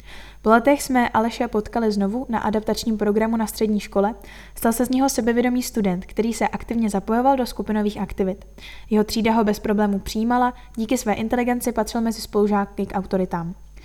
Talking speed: 170 wpm